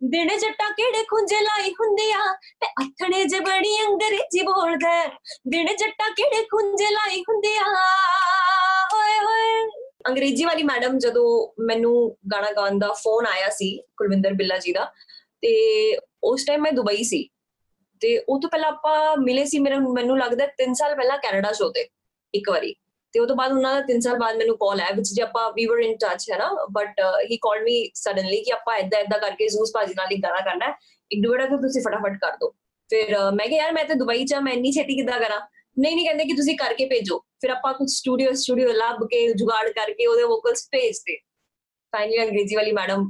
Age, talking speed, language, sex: 20-39, 195 wpm, Punjabi, female